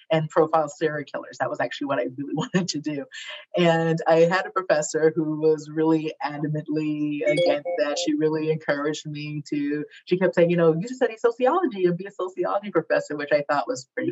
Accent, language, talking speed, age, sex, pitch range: American, English, 205 wpm, 30-49, female, 155-190 Hz